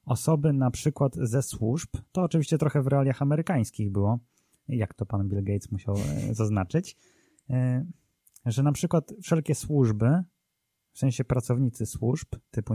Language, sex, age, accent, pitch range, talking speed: Polish, male, 20-39, native, 110-140 Hz, 135 wpm